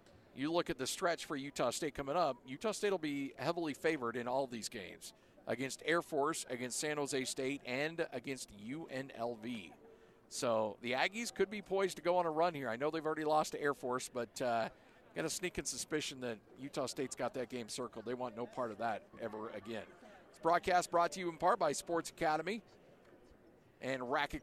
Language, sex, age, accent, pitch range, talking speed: English, male, 50-69, American, 135-190 Hz, 205 wpm